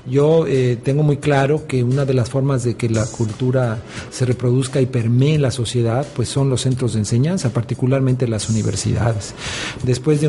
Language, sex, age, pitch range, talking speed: Spanish, male, 40-59, 120-135 Hz, 180 wpm